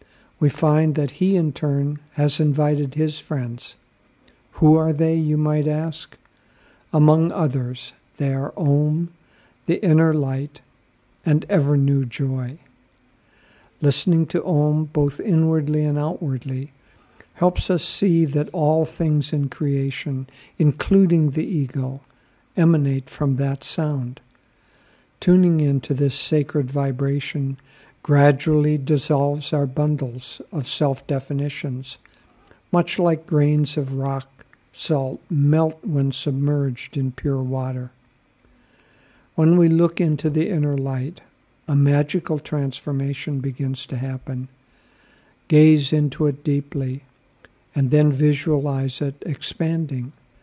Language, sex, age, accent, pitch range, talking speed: English, male, 60-79, American, 135-155 Hz, 110 wpm